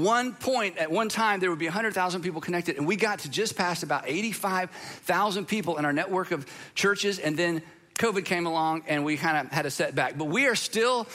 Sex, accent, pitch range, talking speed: male, American, 160-205 Hz, 240 wpm